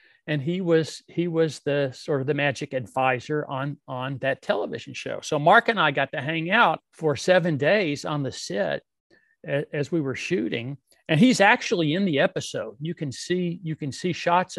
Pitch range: 140-180 Hz